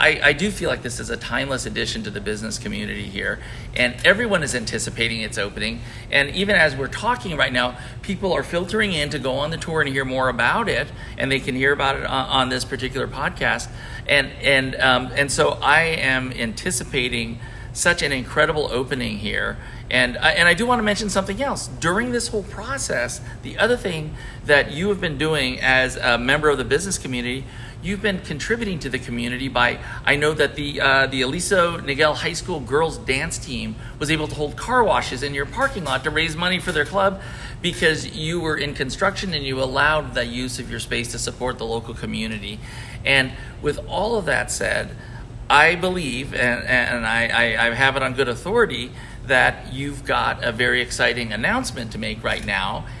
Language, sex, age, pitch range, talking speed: English, male, 40-59, 120-155 Hz, 200 wpm